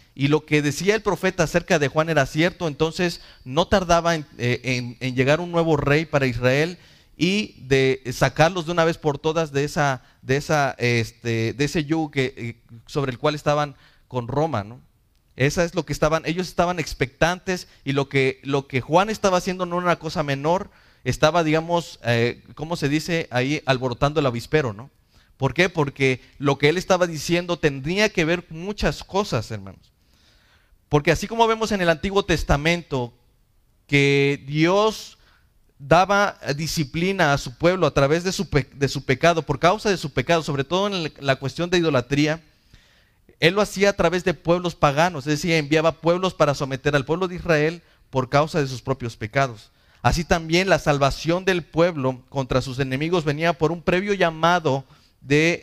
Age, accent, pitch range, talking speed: 30-49, Mexican, 135-170 Hz, 175 wpm